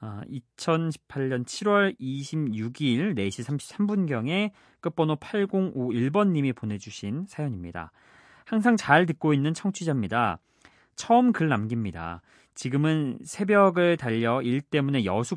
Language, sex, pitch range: Korean, male, 105-155 Hz